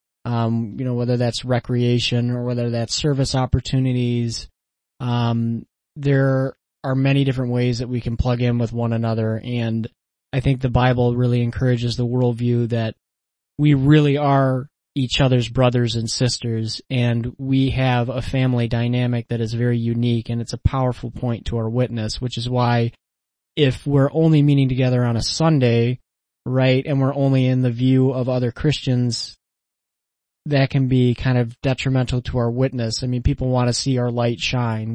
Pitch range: 115-130 Hz